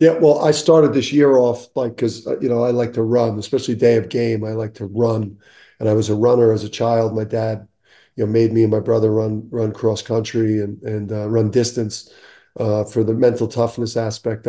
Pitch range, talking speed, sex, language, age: 110-125 Hz, 230 wpm, male, English, 40-59